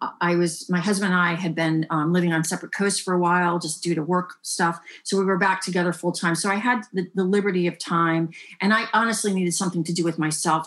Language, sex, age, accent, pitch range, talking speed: English, female, 40-59, American, 170-200 Hz, 255 wpm